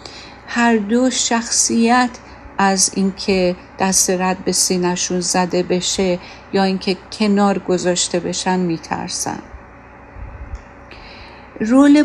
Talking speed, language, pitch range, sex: 90 wpm, Persian, 185-220 Hz, female